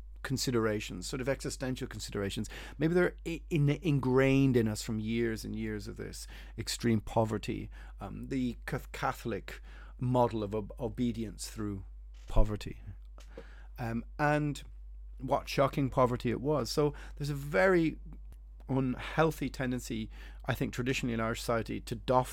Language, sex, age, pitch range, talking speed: English, male, 30-49, 105-130 Hz, 125 wpm